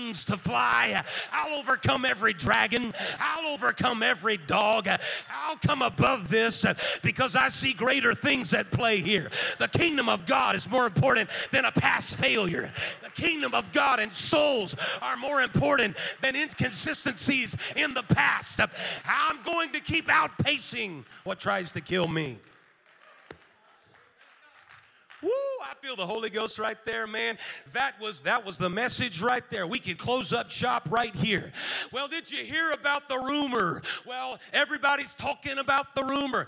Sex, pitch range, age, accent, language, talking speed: male, 215-275 Hz, 40-59, American, English, 155 wpm